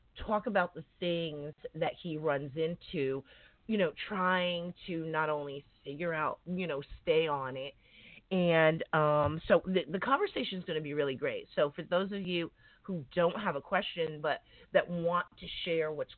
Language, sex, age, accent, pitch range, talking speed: English, female, 30-49, American, 145-195 Hz, 180 wpm